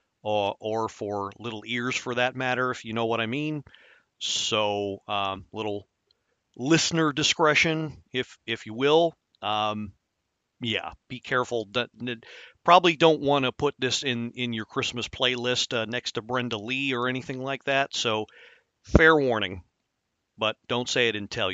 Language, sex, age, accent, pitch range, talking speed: English, male, 40-59, American, 120-170 Hz, 160 wpm